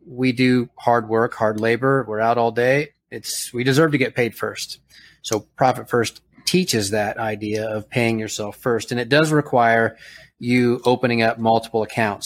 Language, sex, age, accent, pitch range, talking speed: English, male, 30-49, American, 110-125 Hz, 175 wpm